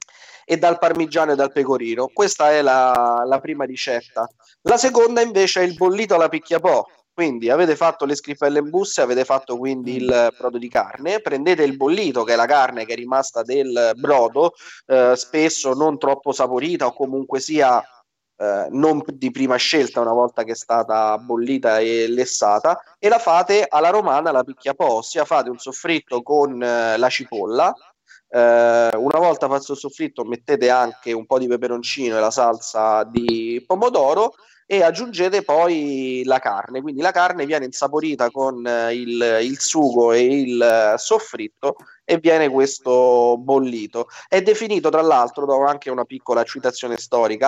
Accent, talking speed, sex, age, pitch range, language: native, 165 wpm, male, 30-49, 120-160 Hz, Italian